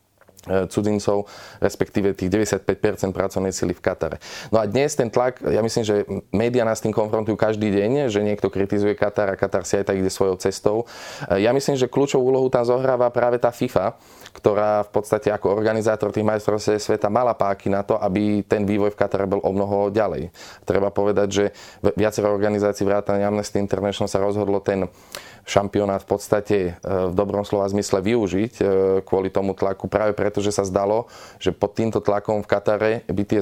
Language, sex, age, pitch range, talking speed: Slovak, male, 20-39, 100-110 Hz, 180 wpm